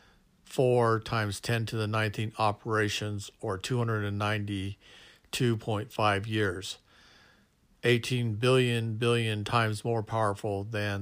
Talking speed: 95 wpm